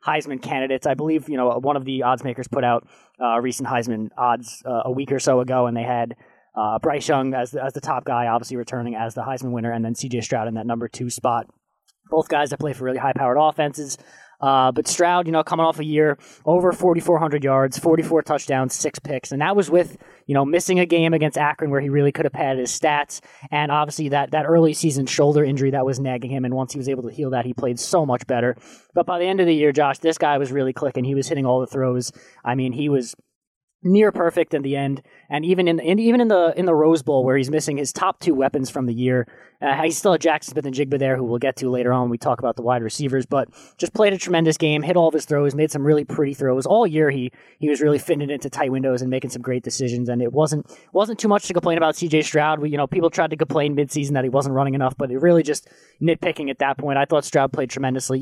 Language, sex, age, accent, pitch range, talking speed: English, male, 20-39, American, 130-155 Hz, 265 wpm